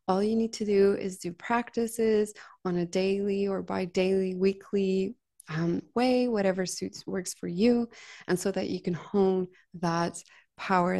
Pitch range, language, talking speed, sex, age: 180-210 Hz, English, 165 wpm, female, 20-39